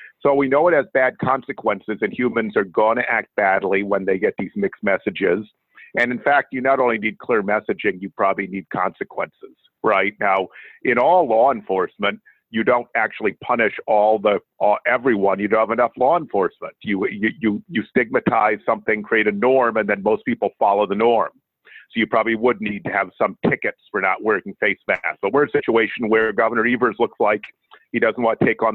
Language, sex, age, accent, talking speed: English, male, 50-69, American, 205 wpm